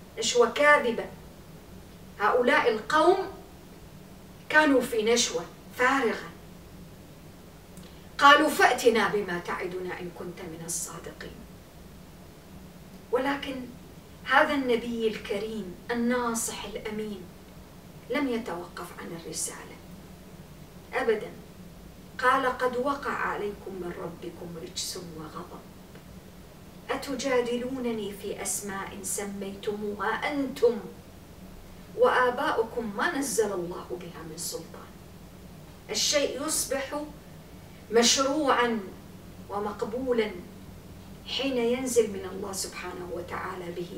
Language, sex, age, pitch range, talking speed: English, female, 40-59, 185-255 Hz, 80 wpm